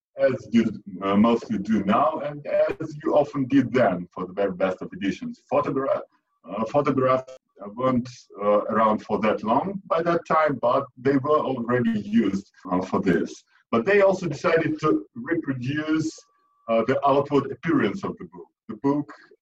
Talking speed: 160 wpm